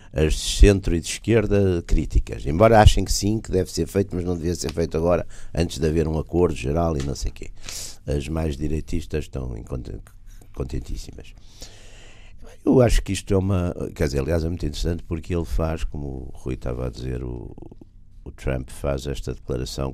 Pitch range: 70-95 Hz